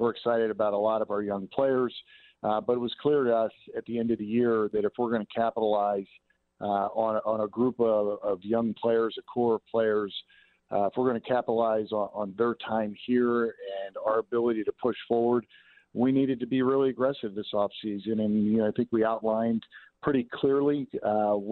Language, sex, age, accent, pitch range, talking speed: English, male, 50-69, American, 105-125 Hz, 210 wpm